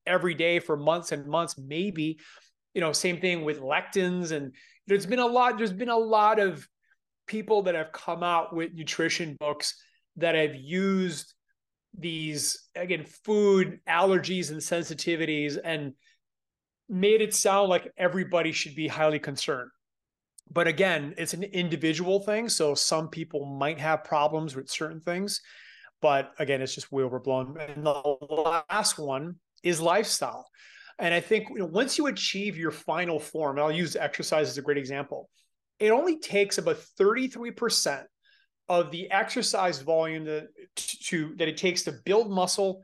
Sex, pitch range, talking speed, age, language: male, 155-200 Hz, 155 wpm, 30-49, English